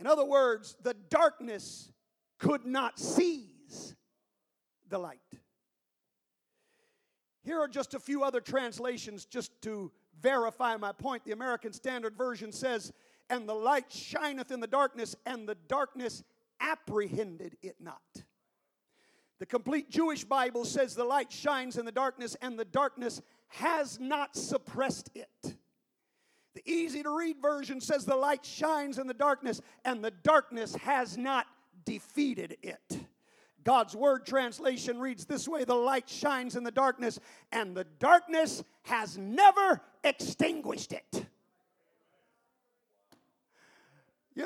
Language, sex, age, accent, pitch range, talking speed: English, male, 50-69, American, 235-300 Hz, 130 wpm